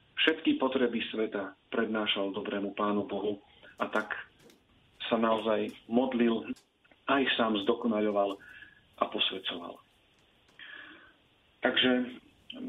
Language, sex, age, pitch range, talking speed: Slovak, male, 40-59, 110-120 Hz, 85 wpm